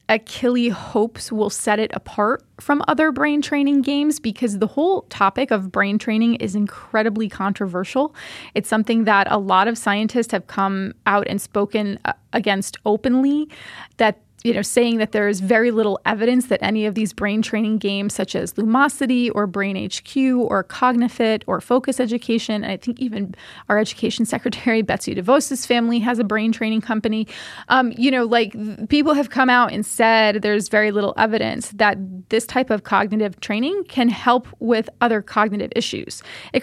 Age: 20-39